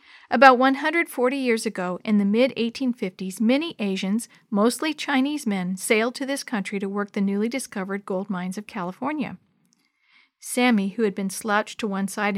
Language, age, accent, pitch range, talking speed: English, 50-69, American, 200-250 Hz, 160 wpm